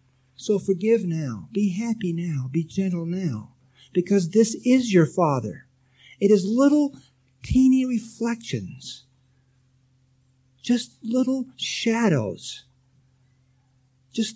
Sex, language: male, English